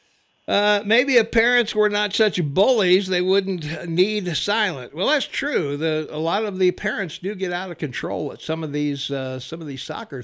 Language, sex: English, male